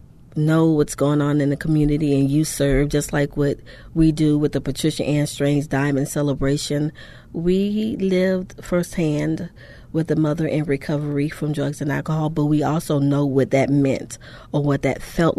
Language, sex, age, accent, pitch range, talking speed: English, female, 40-59, American, 140-160 Hz, 175 wpm